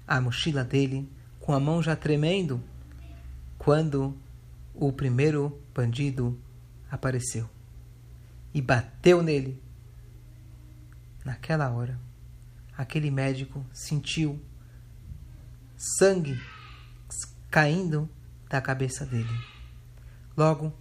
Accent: Brazilian